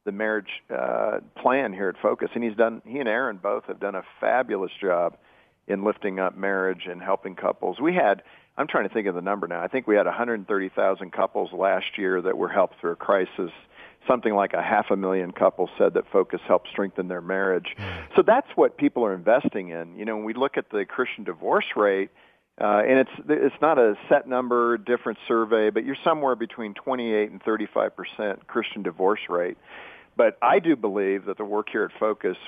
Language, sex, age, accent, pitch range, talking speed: English, male, 50-69, American, 100-130 Hz, 205 wpm